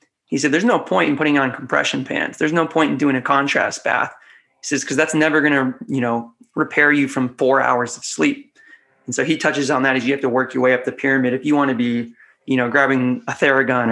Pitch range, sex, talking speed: 125-155 Hz, male, 260 wpm